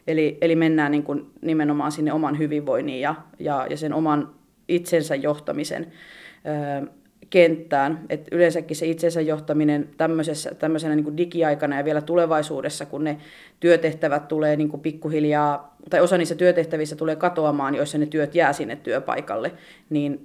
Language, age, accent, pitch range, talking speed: Finnish, 30-49, native, 150-180 Hz, 120 wpm